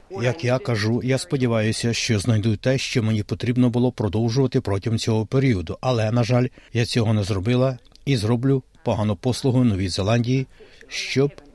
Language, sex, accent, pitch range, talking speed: Ukrainian, male, native, 110-130 Hz, 155 wpm